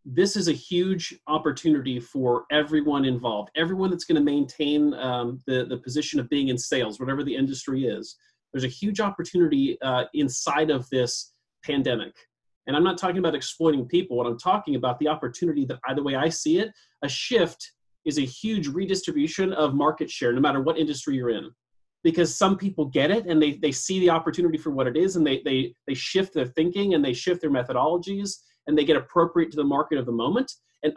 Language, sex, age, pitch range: English, male, 30-49, 130-175 Hz